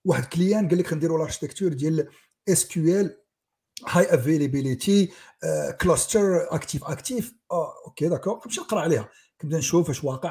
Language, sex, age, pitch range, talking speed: Arabic, male, 50-69, 145-200 Hz, 140 wpm